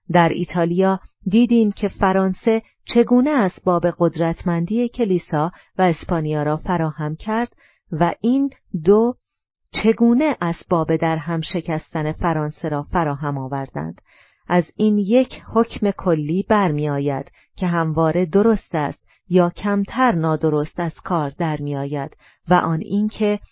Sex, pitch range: female, 160-205 Hz